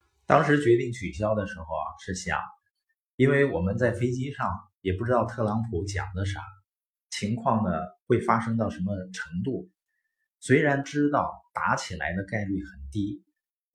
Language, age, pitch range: Chinese, 50-69, 95-120 Hz